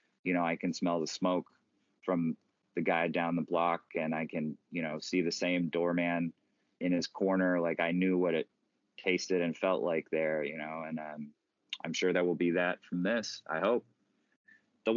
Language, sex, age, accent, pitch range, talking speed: English, male, 20-39, American, 90-105 Hz, 200 wpm